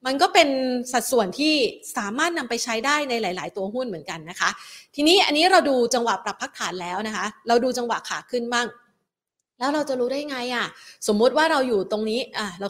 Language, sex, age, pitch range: Thai, female, 30-49, 215-275 Hz